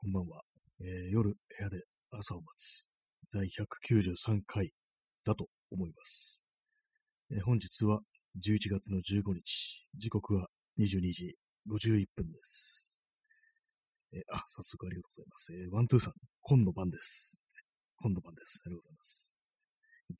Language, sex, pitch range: Japanese, male, 95-130 Hz